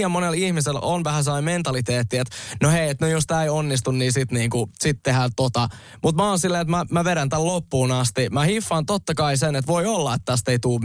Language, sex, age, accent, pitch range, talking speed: Finnish, male, 20-39, native, 125-160 Hz, 245 wpm